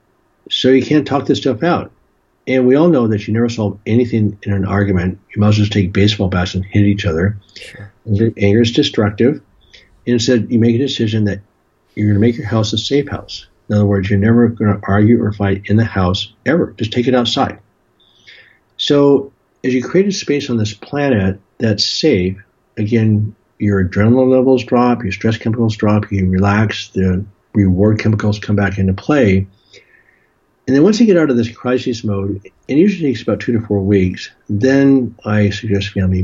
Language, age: English, 60-79